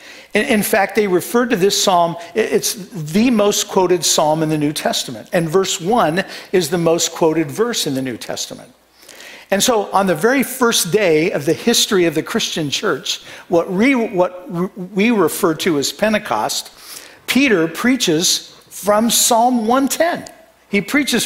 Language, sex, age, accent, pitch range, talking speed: English, male, 50-69, American, 160-215 Hz, 160 wpm